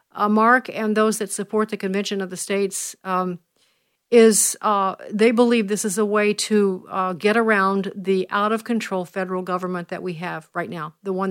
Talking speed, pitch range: 195 wpm, 185-210 Hz